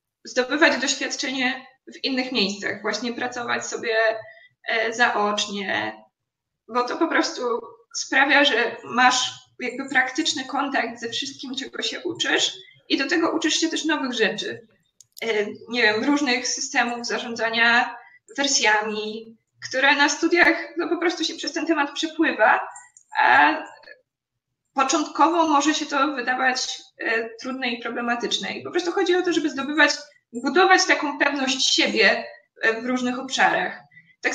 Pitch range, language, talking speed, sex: 235-320 Hz, Polish, 130 wpm, female